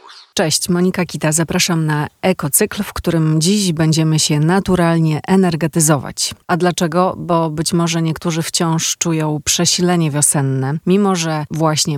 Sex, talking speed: female, 130 wpm